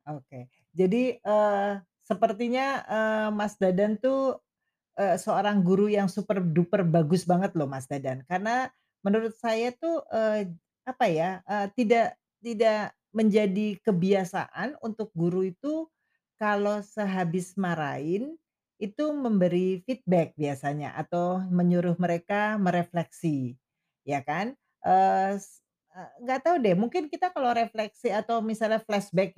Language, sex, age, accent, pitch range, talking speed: Indonesian, female, 40-59, native, 175-235 Hz, 125 wpm